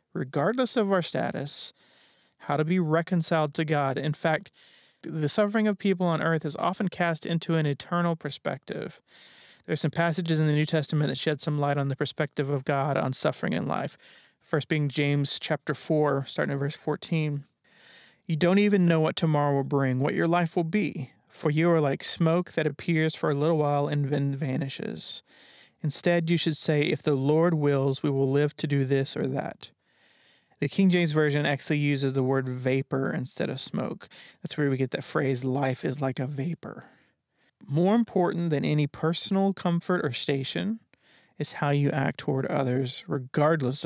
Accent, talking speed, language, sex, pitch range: American, 185 wpm, English, male, 140-170 Hz